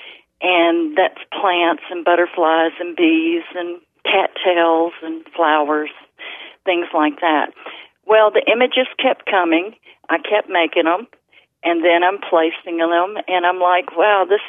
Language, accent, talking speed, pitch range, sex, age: English, American, 135 wpm, 170-220 Hz, female, 50-69